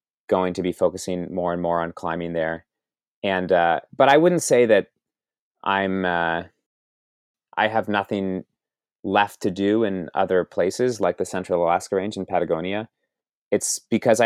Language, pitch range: English, 90-105 Hz